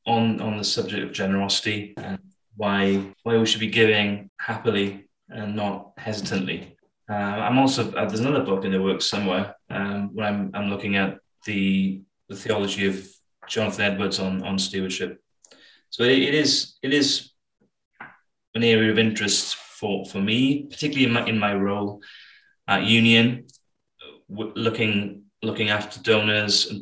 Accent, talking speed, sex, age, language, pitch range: British, 155 wpm, male, 20-39, English, 95-115 Hz